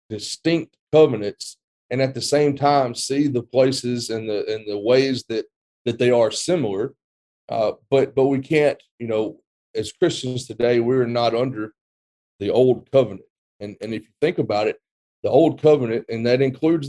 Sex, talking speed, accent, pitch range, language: male, 175 wpm, American, 110-140 Hz, English